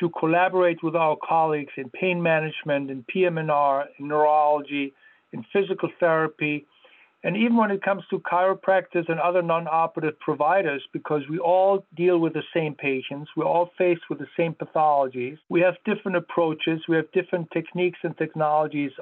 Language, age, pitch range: English, 50-69, 150-180 Hz